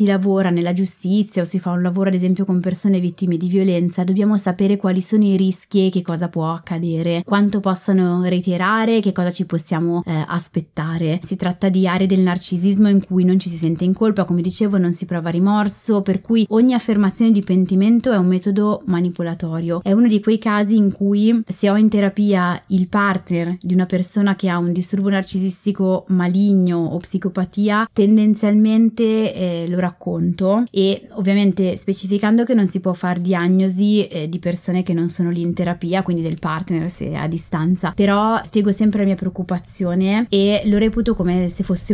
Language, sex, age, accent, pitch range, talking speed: Italian, female, 20-39, native, 175-200 Hz, 185 wpm